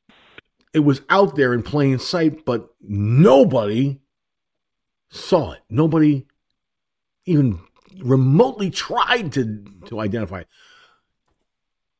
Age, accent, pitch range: 50-69, American, 120-185 Hz